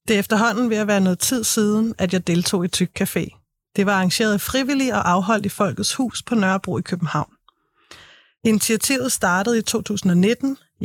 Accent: native